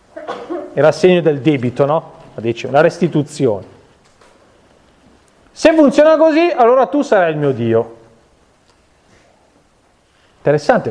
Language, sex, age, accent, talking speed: Italian, male, 30-49, native, 95 wpm